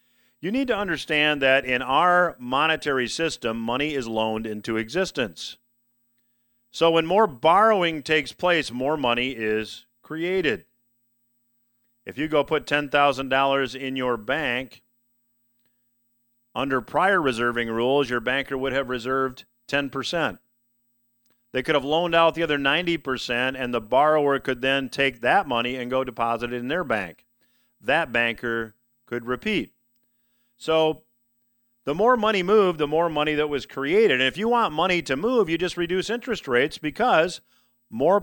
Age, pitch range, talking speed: 50-69, 120-155 Hz, 150 wpm